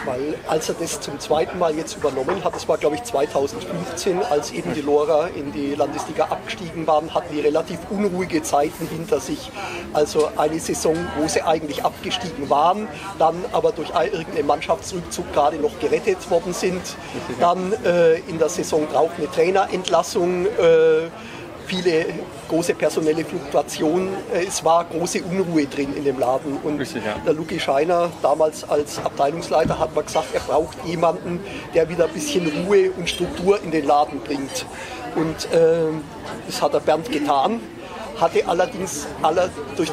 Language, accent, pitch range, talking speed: German, German, 155-195 Hz, 155 wpm